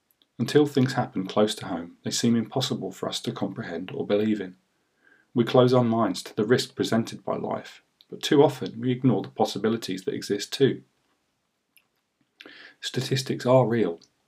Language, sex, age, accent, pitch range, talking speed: English, male, 40-59, British, 105-130 Hz, 165 wpm